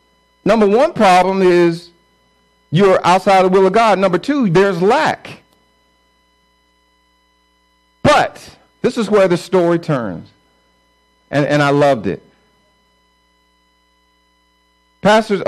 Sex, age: male, 50-69